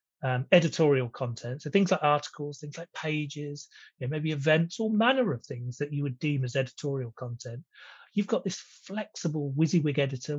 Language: English